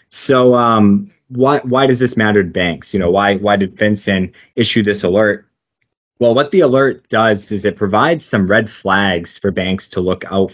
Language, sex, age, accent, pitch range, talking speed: English, male, 20-39, American, 95-110 Hz, 195 wpm